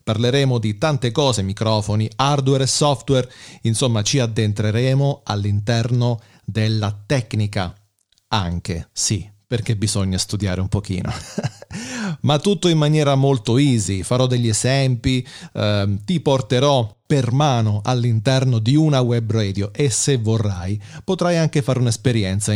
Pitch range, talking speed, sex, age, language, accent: 105-135 Hz, 125 wpm, male, 40-59, Italian, native